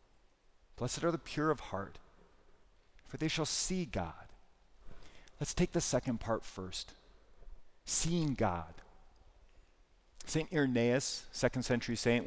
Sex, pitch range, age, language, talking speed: male, 100-140 Hz, 40-59, English, 115 wpm